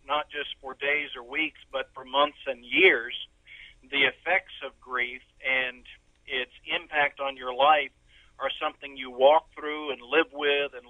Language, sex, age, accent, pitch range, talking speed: English, male, 50-69, American, 135-155 Hz, 165 wpm